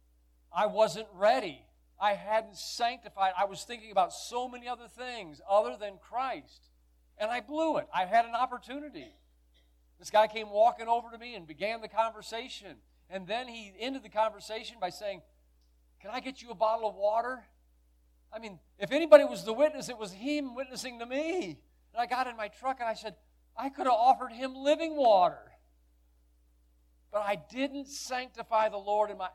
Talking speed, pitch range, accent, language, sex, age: 180 wpm, 155-245 Hz, American, English, male, 50-69